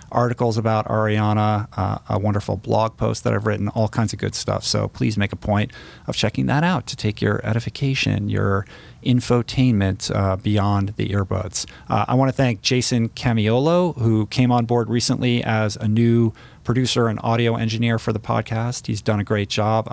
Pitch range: 105-125 Hz